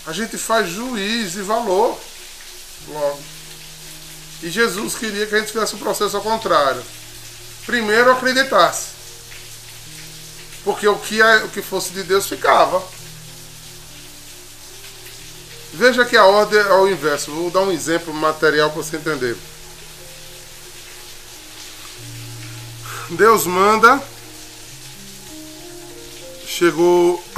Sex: male